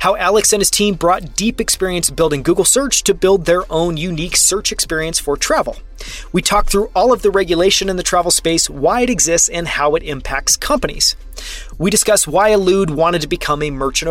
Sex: male